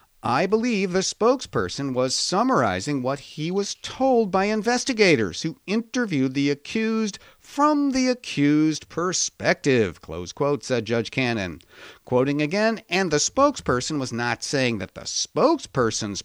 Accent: American